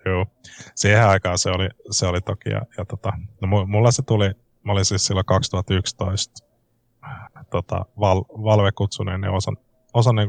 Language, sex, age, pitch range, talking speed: Finnish, male, 20-39, 95-120 Hz, 145 wpm